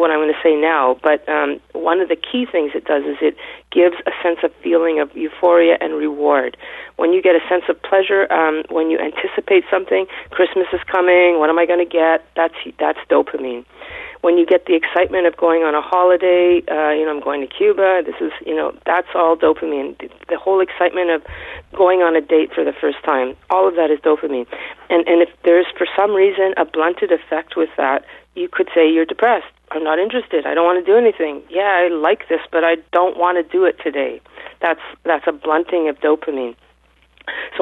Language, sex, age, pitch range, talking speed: English, female, 40-59, 155-180 Hz, 215 wpm